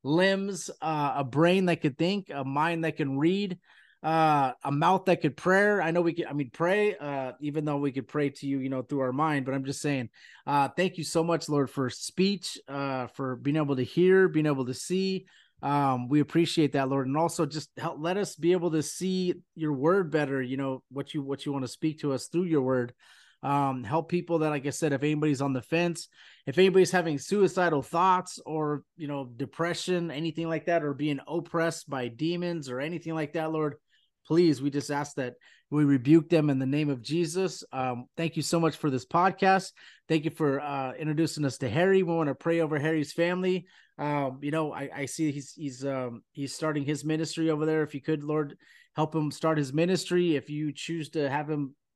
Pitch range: 140-170 Hz